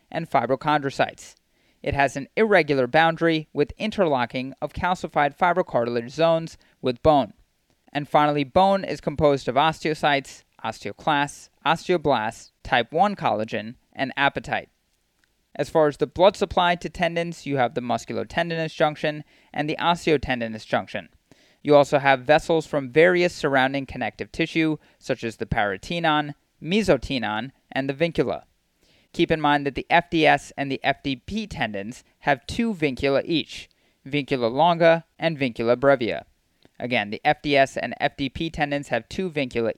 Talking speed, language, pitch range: 135 wpm, English, 130-165 Hz